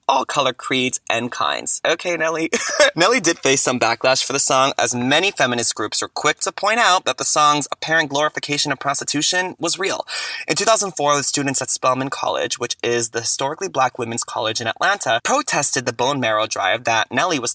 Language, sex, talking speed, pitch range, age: English, male, 195 wpm, 120-160 Hz, 20-39